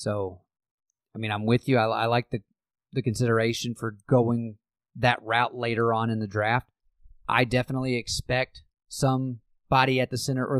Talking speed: 165 wpm